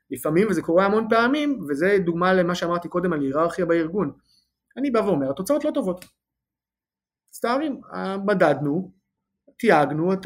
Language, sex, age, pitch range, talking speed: Hebrew, male, 30-49, 150-210 Hz, 135 wpm